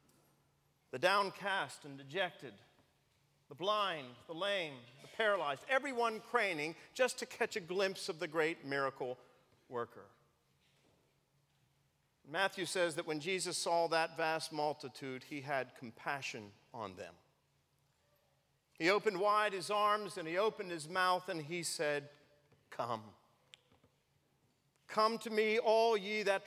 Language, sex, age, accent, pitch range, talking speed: English, male, 40-59, American, 140-200 Hz, 125 wpm